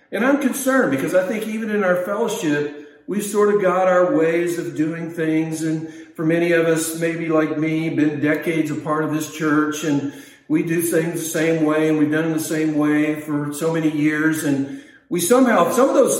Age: 50-69